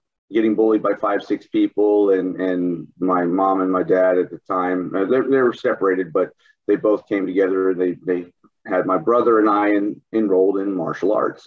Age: 30-49